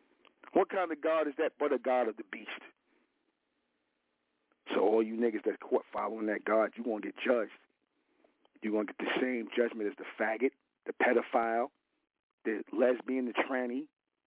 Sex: male